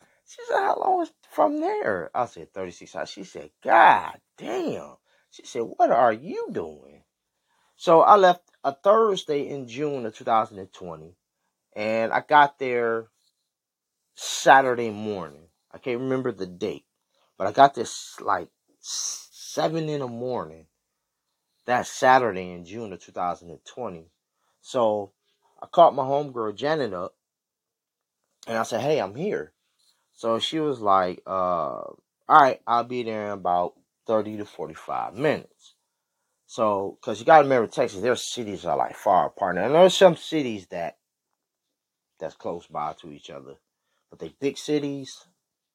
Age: 30-49